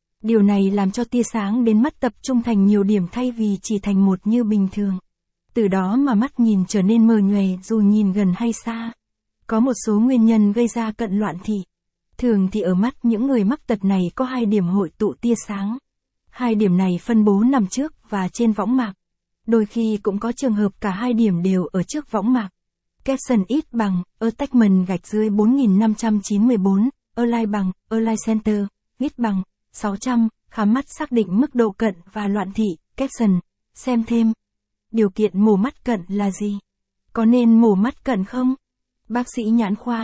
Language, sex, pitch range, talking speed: Vietnamese, female, 200-235 Hz, 195 wpm